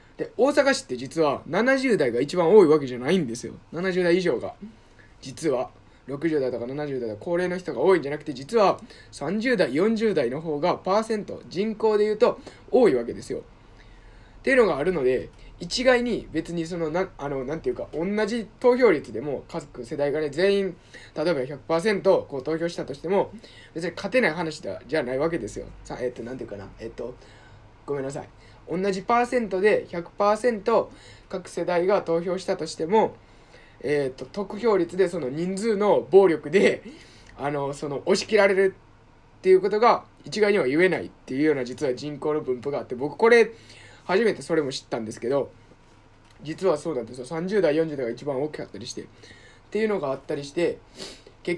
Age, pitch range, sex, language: 20-39, 140-200 Hz, male, Japanese